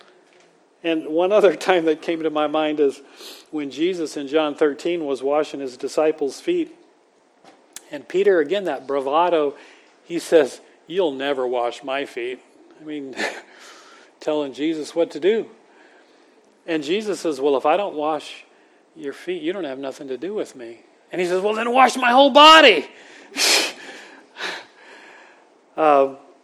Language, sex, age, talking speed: English, male, 40-59, 150 wpm